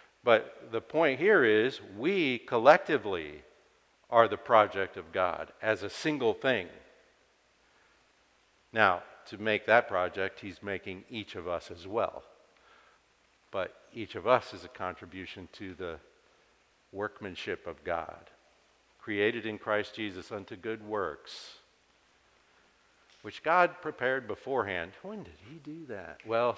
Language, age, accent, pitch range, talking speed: English, 50-69, American, 100-135 Hz, 130 wpm